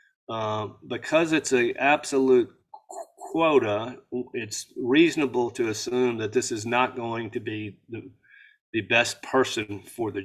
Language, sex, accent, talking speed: English, male, American, 135 wpm